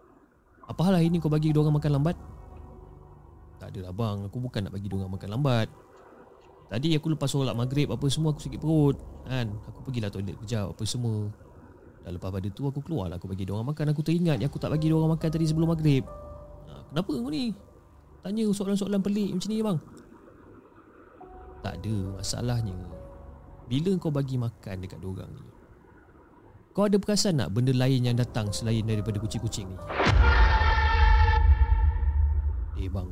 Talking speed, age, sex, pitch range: 165 wpm, 30-49, male, 95-150 Hz